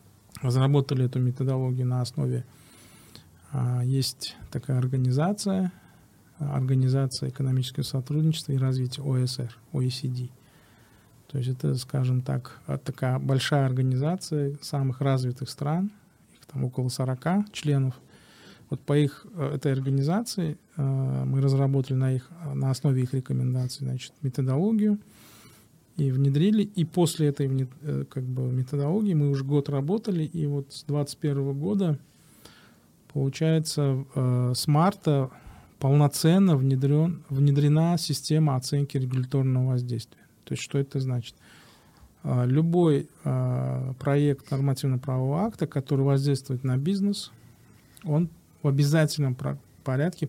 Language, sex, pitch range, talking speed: Russian, male, 130-150 Hz, 105 wpm